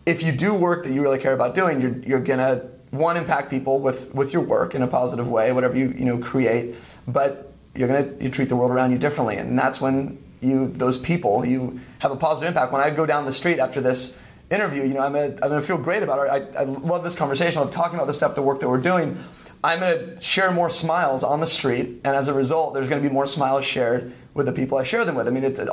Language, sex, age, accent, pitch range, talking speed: English, male, 30-49, American, 125-150 Hz, 275 wpm